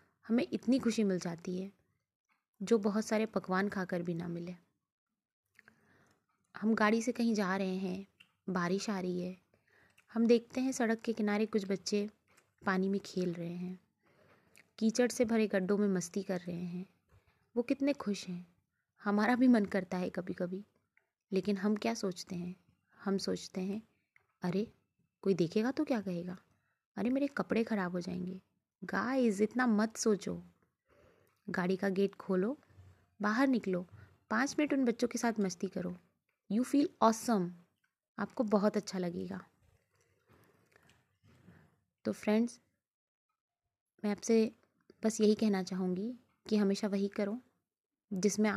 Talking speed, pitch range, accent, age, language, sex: 145 wpm, 185-225 Hz, native, 20-39, Hindi, female